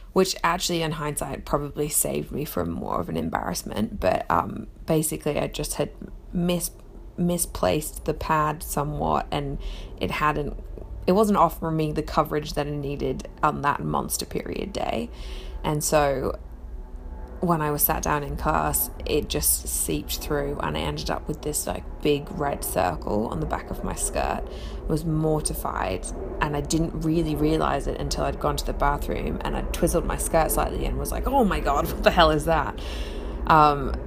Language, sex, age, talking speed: English, female, 20-39, 175 wpm